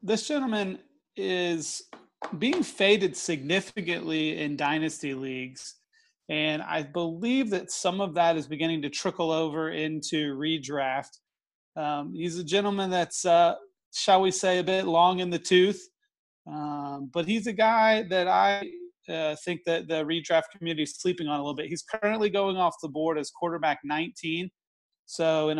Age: 30-49